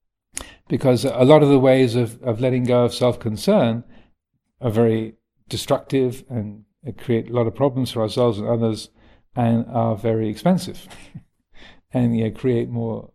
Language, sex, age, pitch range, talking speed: English, male, 50-69, 110-125 Hz, 150 wpm